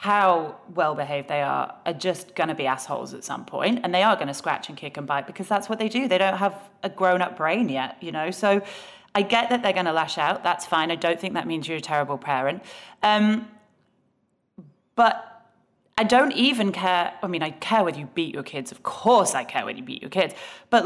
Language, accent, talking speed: English, British, 235 wpm